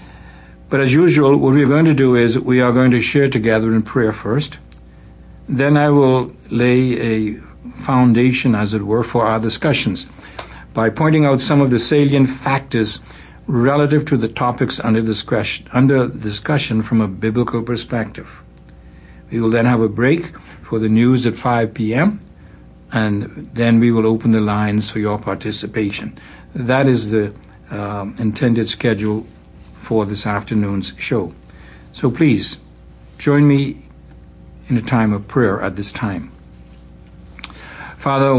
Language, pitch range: English, 105-130 Hz